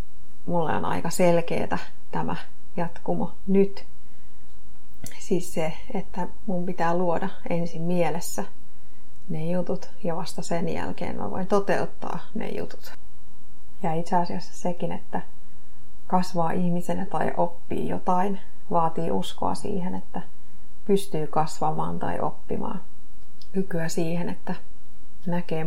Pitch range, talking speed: 160-185 Hz, 110 wpm